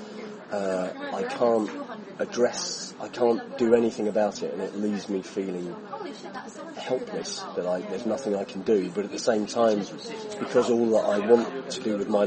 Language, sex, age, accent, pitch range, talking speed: English, male, 30-49, British, 100-120 Hz, 180 wpm